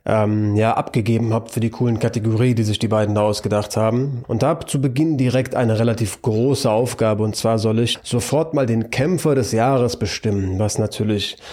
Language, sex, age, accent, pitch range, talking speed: German, male, 20-39, German, 110-120 Hz, 200 wpm